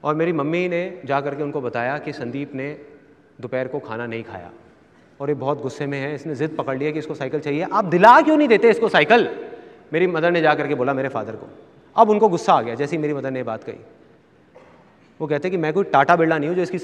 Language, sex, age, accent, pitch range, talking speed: Hindi, male, 30-49, native, 140-195 Hz, 255 wpm